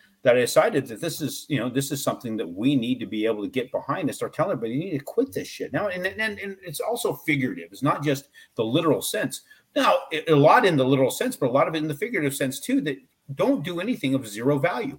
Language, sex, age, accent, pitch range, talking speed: English, male, 40-59, American, 130-200 Hz, 270 wpm